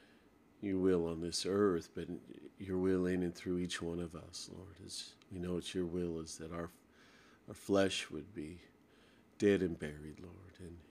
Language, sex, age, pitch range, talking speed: English, male, 50-69, 85-95 Hz, 195 wpm